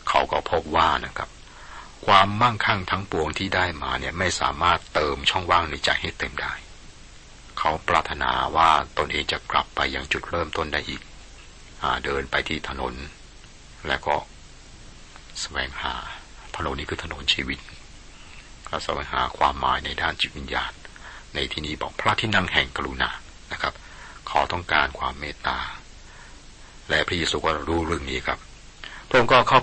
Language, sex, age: Thai, male, 60-79